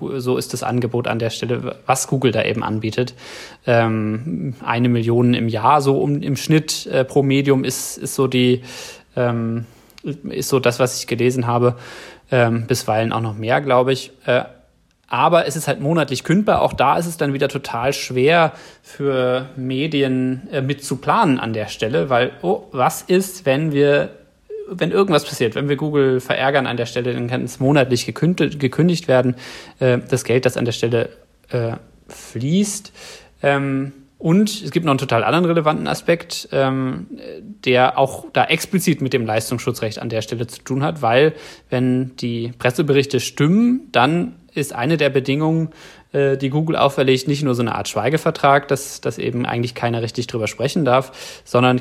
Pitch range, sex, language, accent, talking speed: 120-145 Hz, male, German, German, 165 wpm